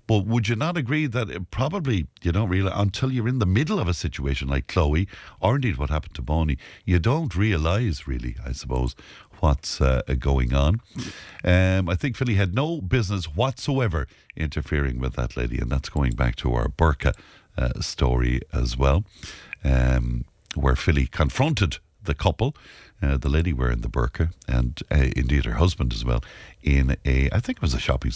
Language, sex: English, male